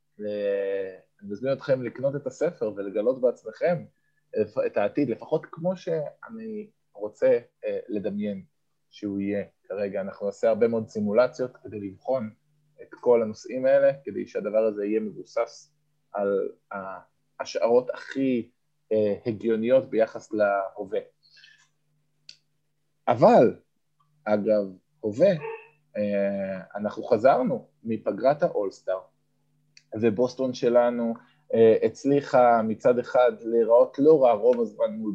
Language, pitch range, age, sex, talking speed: Hebrew, 110-155 Hz, 20-39, male, 100 wpm